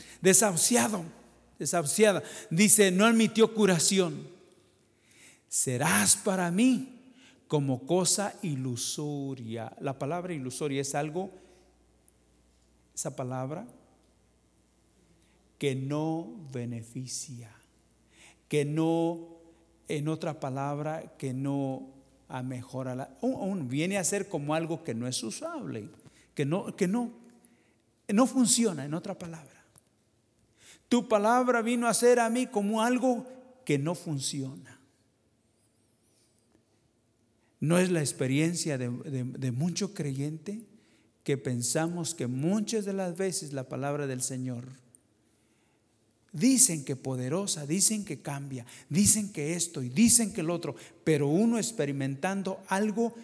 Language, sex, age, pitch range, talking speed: English, male, 50-69, 125-190 Hz, 110 wpm